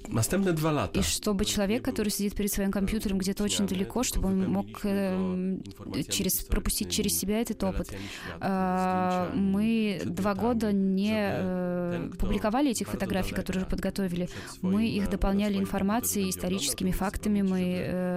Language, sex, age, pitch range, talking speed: Russian, female, 20-39, 180-205 Hz, 120 wpm